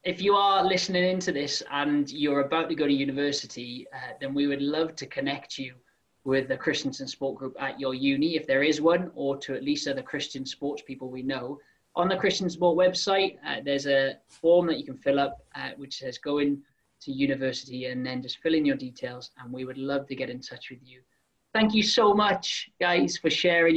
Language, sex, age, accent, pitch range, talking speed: English, male, 20-39, British, 135-175 Hz, 220 wpm